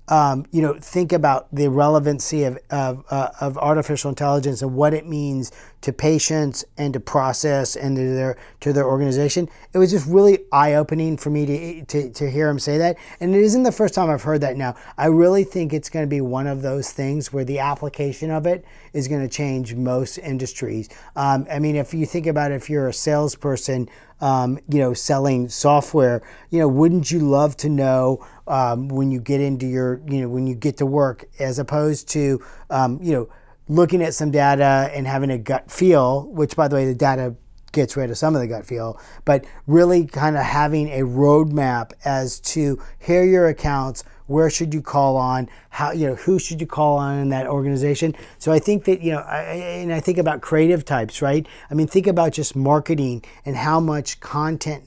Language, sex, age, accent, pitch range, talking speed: English, male, 40-59, American, 135-160 Hz, 210 wpm